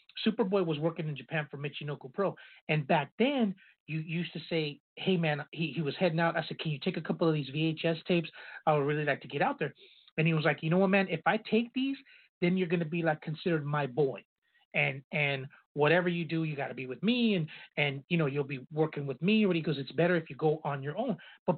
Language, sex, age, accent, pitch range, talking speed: English, male, 30-49, American, 150-180 Hz, 260 wpm